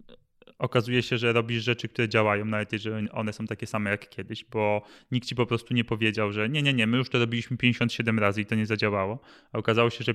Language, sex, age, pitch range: Polish, male, 20-39, 110-130 Hz